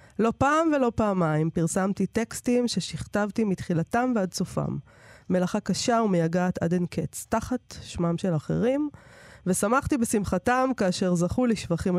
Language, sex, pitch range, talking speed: Hebrew, female, 175-235 Hz, 125 wpm